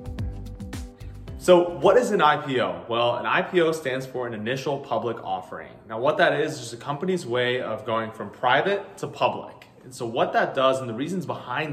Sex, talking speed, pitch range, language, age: male, 190 wpm, 115-155 Hz, English, 20-39